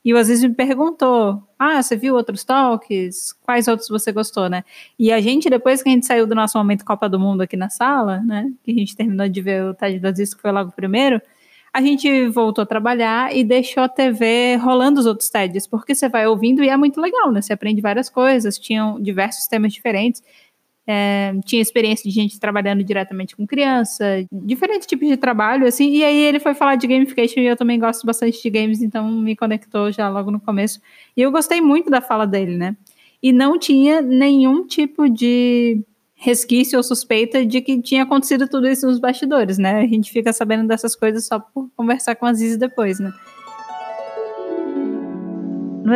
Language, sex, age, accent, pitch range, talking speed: Portuguese, female, 20-39, Brazilian, 205-255 Hz, 200 wpm